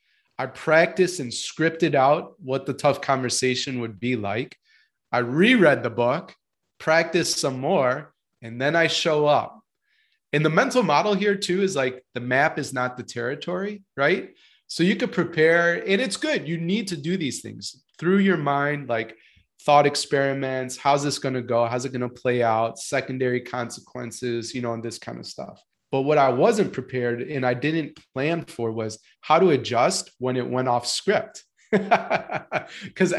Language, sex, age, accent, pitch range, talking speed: English, male, 30-49, American, 125-175 Hz, 175 wpm